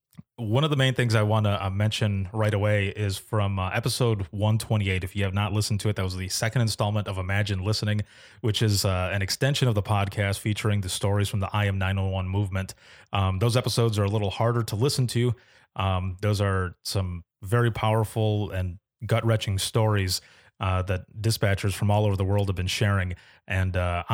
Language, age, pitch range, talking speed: English, 30-49, 100-115 Hz, 200 wpm